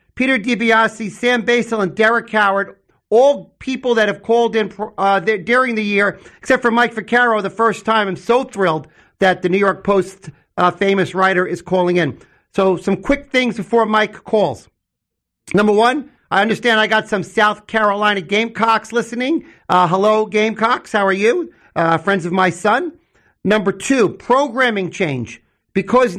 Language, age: English, 50-69